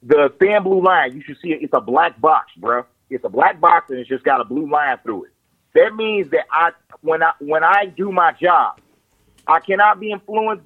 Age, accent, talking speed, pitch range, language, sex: 30-49, American, 225 wpm, 165-210 Hz, English, male